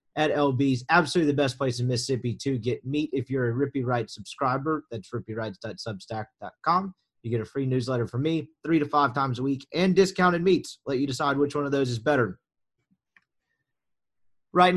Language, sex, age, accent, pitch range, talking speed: English, male, 30-49, American, 125-160 Hz, 185 wpm